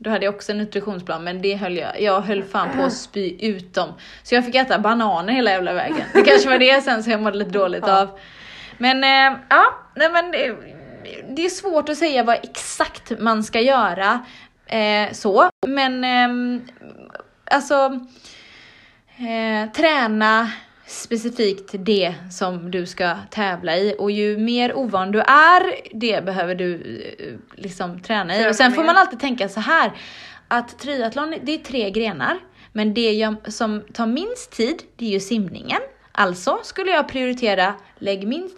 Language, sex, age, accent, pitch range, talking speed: Swedish, female, 20-39, native, 200-275 Hz, 170 wpm